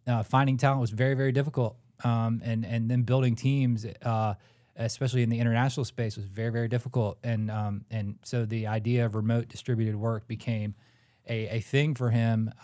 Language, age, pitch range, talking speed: English, 20-39, 105-120 Hz, 185 wpm